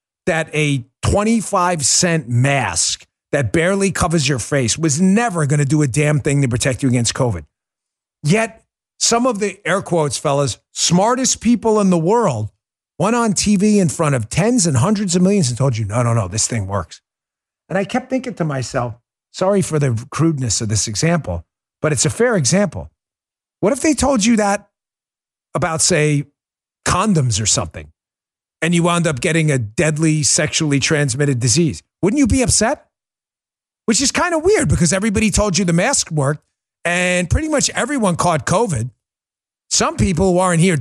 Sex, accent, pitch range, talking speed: male, American, 130-210 Hz, 175 wpm